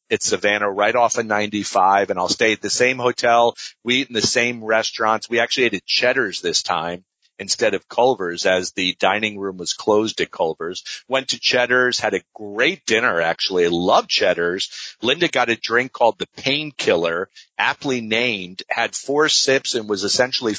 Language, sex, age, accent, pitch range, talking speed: English, male, 40-59, American, 100-125 Hz, 185 wpm